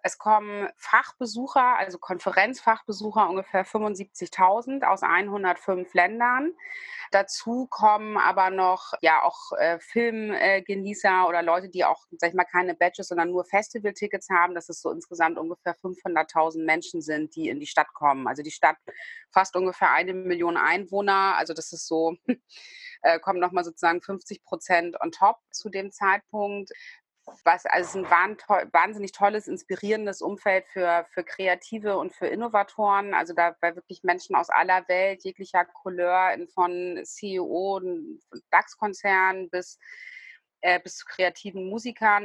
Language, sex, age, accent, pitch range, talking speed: German, female, 30-49, German, 175-205 Hz, 145 wpm